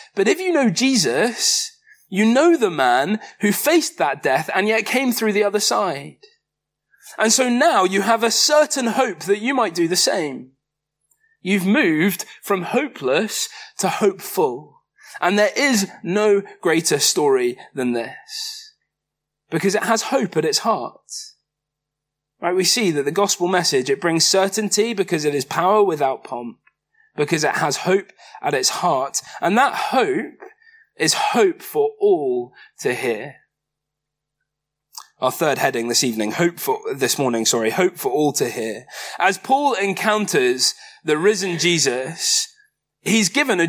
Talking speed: 150 wpm